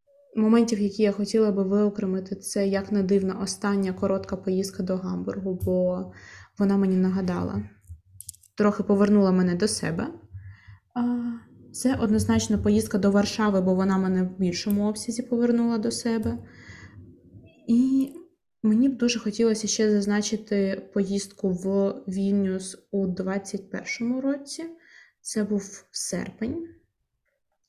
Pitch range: 190-220 Hz